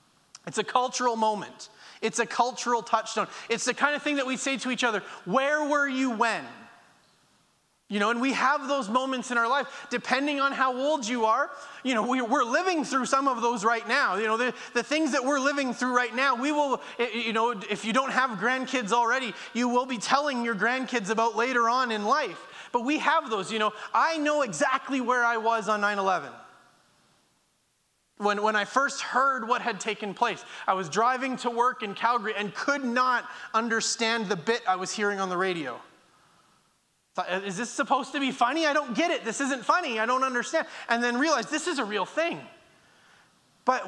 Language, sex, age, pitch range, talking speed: English, male, 30-49, 225-275 Hz, 205 wpm